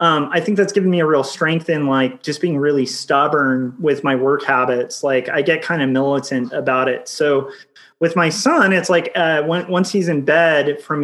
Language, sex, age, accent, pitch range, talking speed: English, male, 30-49, American, 135-160 Hz, 210 wpm